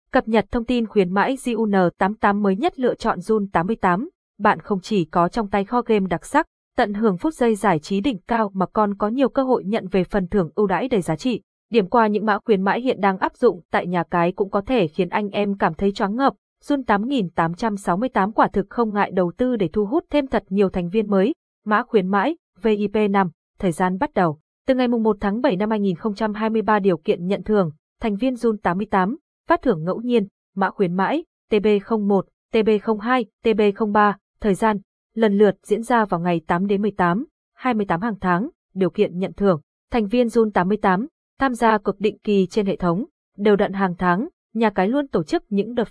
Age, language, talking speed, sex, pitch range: 20-39, Vietnamese, 205 wpm, female, 190-235 Hz